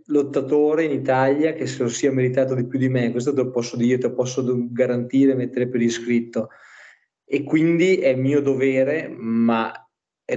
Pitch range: 125-140 Hz